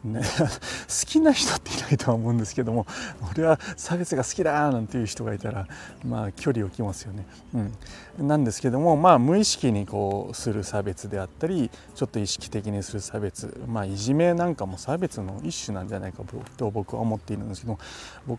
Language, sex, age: Japanese, male, 40-59